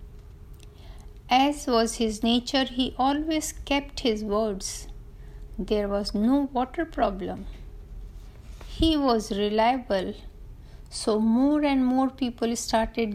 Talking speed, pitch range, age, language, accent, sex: 105 wpm, 215-265 Hz, 50-69, Hindi, native, female